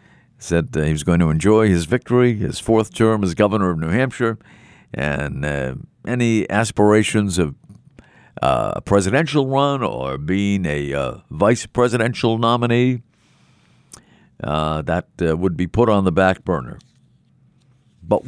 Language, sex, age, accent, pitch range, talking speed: English, male, 50-69, American, 90-125 Hz, 140 wpm